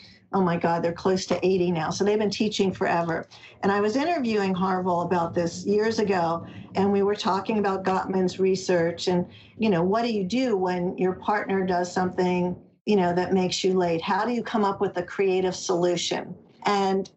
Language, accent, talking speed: English, American, 200 wpm